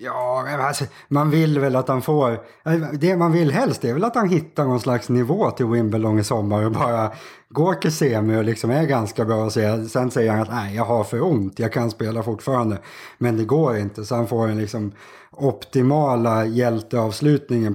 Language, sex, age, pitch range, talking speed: Swedish, male, 30-49, 110-130 Hz, 205 wpm